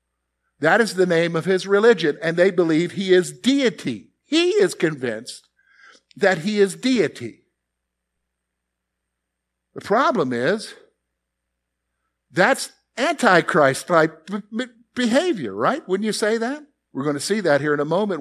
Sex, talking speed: male, 145 wpm